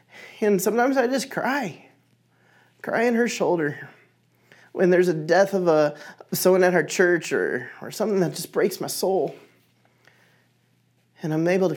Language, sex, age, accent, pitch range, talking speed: English, male, 30-49, American, 170-210 Hz, 160 wpm